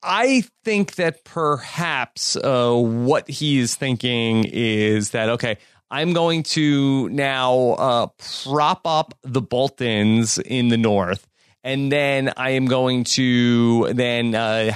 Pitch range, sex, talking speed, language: 115-140 Hz, male, 130 wpm, English